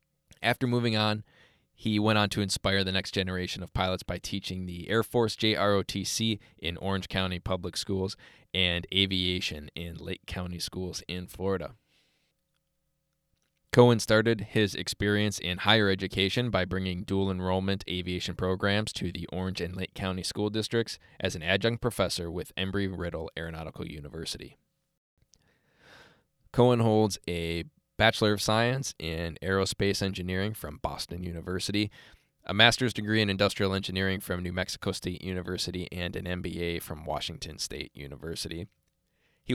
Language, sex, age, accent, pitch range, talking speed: English, male, 20-39, American, 90-105 Hz, 140 wpm